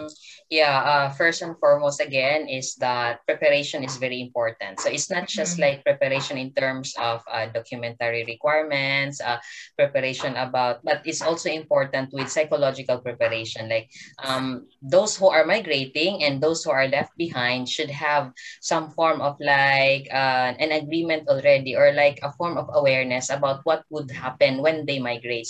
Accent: Filipino